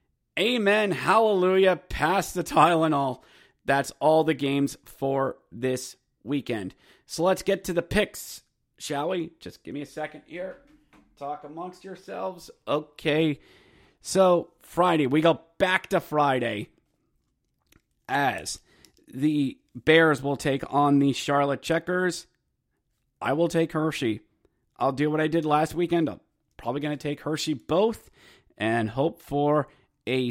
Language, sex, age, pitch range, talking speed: English, male, 30-49, 135-175 Hz, 135 wpm